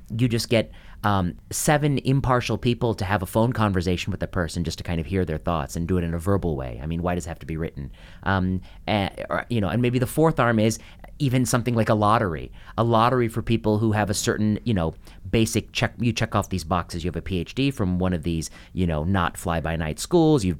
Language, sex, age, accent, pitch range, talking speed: English, male, 30-49, American, 85-110 Hz, 250 wpm